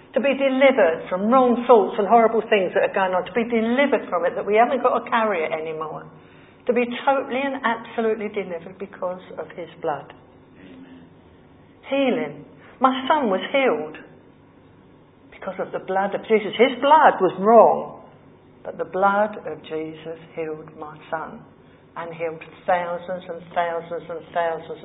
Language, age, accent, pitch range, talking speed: English, 60-79, British, 165-230 Hz, 160 wpm